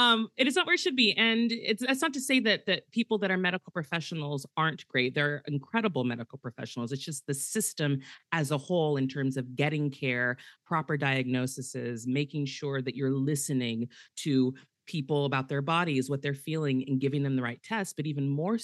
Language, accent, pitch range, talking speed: English, American, 130-155 Hz, 205 wpm